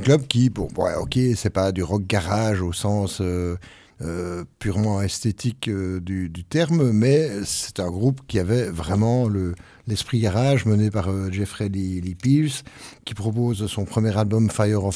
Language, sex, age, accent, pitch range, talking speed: French, male, 50-69, French, 100-125 Hz, 185 wpm